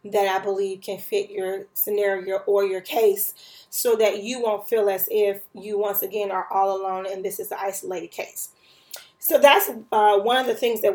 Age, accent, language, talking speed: 30-49, American, English, 205 wpm